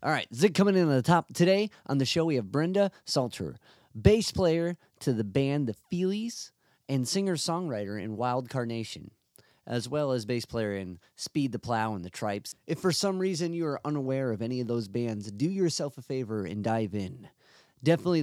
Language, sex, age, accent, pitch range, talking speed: English, male, 30-49, American, 110-150 Hz, 200 wpm